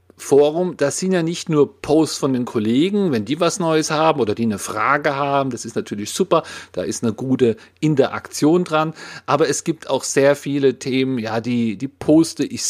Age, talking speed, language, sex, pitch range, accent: 40-59, 200 wpm, German, male, 115-155 Hz, German